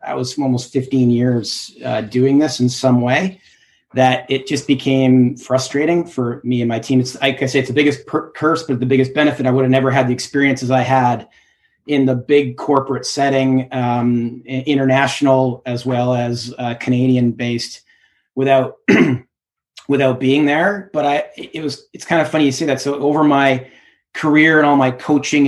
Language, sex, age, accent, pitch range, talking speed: English, male, 30-49, American, 125-135 Hz, 190 wpm